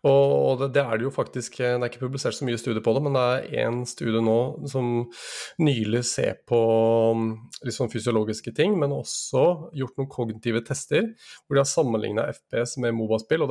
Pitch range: 115-130 Hz